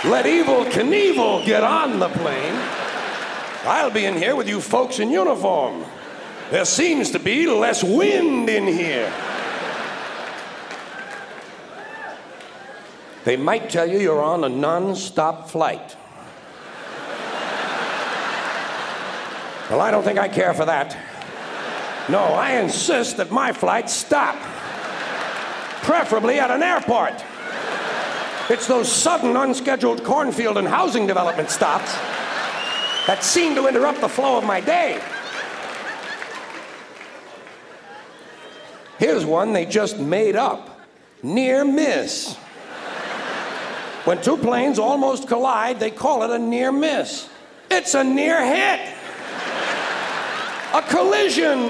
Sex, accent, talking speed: male, American, 110 wpm